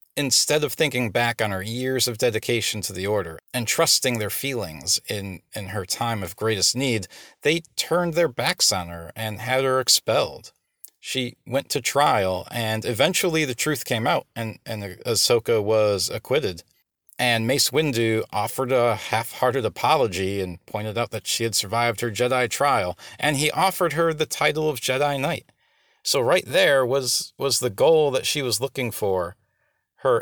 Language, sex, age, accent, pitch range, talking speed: English, male, 40-59, American, 110-135 Hz, 175 wpm